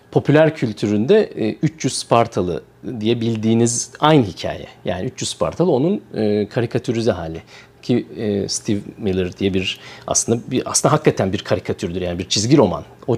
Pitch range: 115-175 Hz